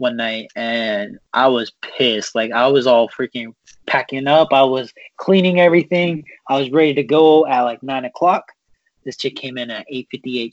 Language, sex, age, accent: English, male, 20-39, American